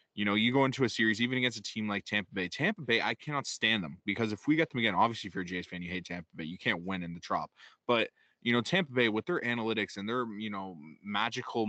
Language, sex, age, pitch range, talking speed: English, male, 20-39, 95-110 Hz, 285 wpm